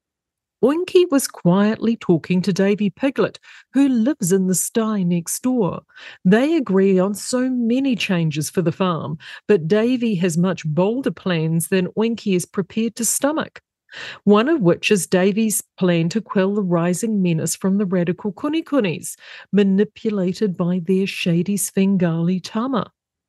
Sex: female